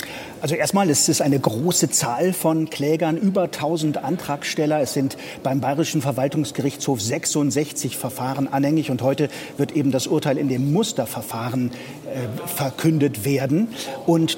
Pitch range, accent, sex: 135-170 Hz, German, male